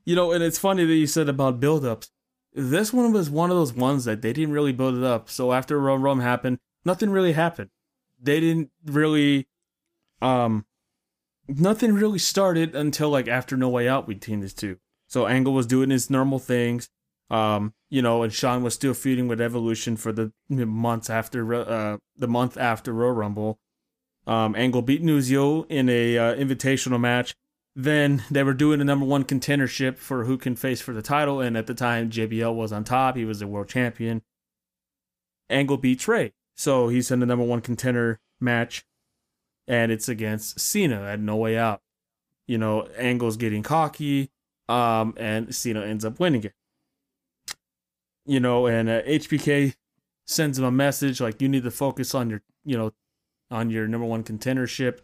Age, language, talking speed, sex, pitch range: 20-39, English, 180 wpm, male, 115-140 Hz